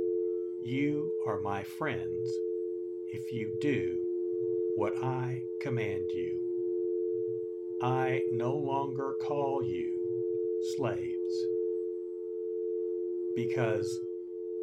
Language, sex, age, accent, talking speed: English, male, 60-79, American, 75 wpm